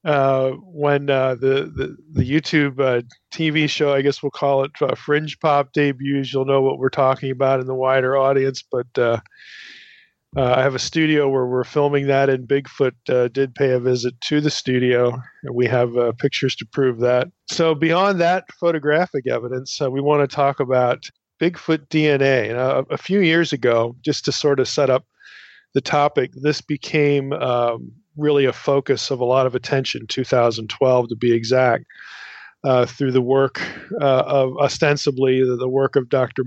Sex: male